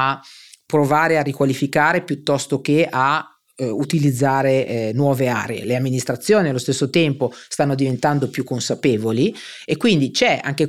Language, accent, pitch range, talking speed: Italian, native, 125-165 Hz, 140 wpm